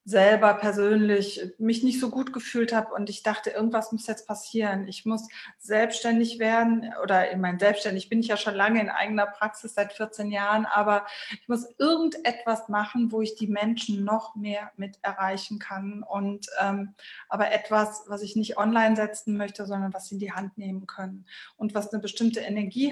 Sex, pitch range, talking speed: female, 205-230 Hz, 185 wpm